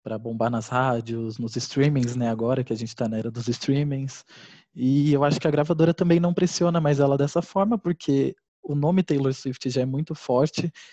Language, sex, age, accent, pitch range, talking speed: Portuguese, male, 20-39, Brazilian, 125-145 Hz, 210 wpm